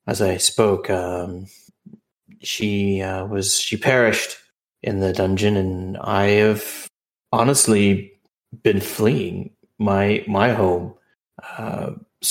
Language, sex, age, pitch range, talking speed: English, male, 30-49, 95-120 Hz, 105 wpm